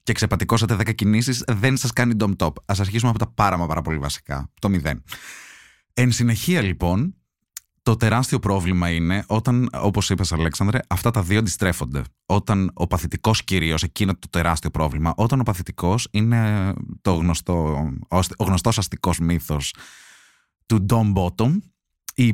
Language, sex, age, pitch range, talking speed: Greek, male, 20-39, 85-115 Hz, 150 wpm